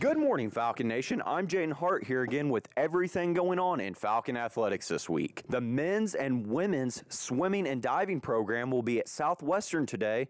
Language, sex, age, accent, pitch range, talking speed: English, male, 30-49, American, 115-170 Hz, 180 wpm